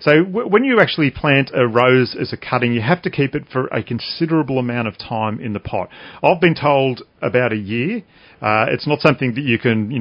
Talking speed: 235 wpm